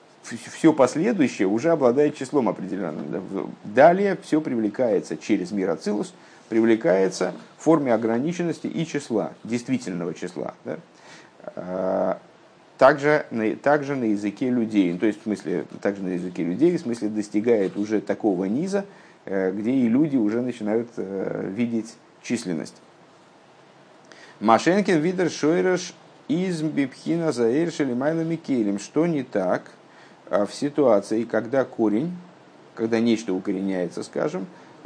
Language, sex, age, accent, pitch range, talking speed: Russian, male, 50-69, native, 110-160 Hz, 110 wpm